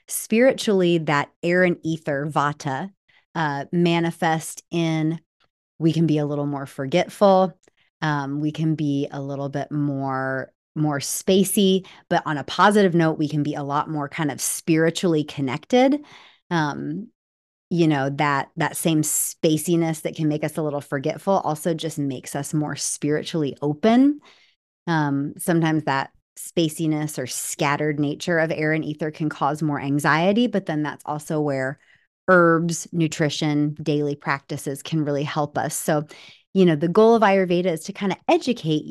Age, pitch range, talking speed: 30-49, 145-175 Hz, 155 wpm